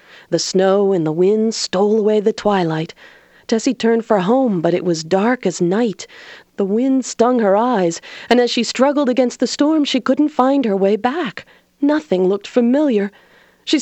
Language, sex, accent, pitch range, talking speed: English, female, American, 170-245 Hz, 180 wpm